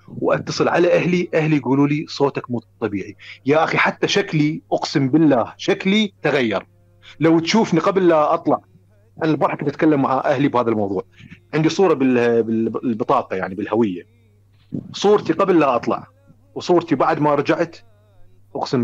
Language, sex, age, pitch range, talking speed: Arabic, male, 40-59, 105-160 Hz, 140 wpm